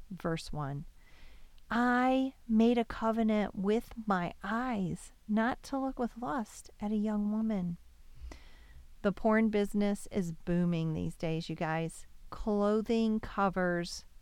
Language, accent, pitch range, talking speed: English, American, 185-250 Hz, 120 wpm